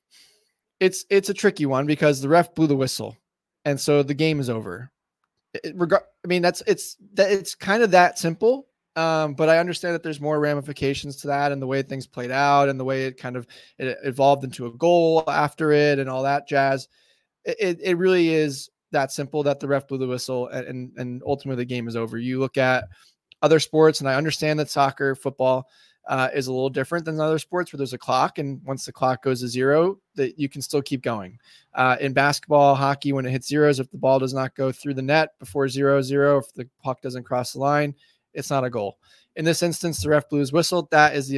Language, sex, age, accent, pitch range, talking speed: English, male, 20-39, American, 130-155 Hz, 235 wpm